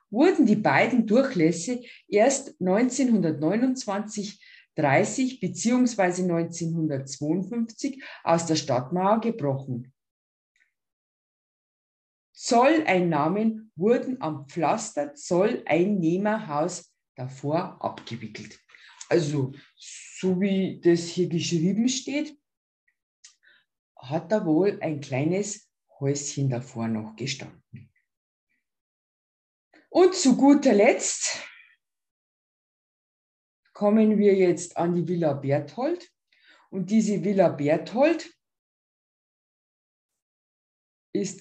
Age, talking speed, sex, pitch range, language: 50-69, 75 wpm, female, 150-225 Hz, German